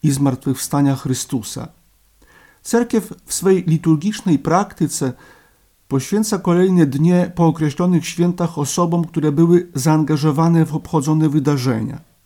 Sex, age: male, 50-69